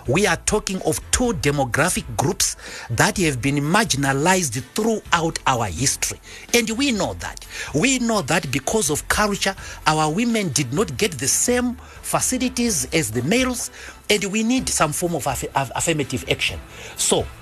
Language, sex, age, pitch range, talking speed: English, male, 50-69, 135-225 Hz, 155 wpm